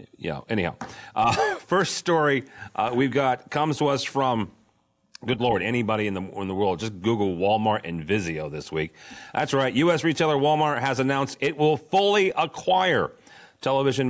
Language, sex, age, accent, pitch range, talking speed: English, male, 40-59, American, 105-140 Hz, 165 wpm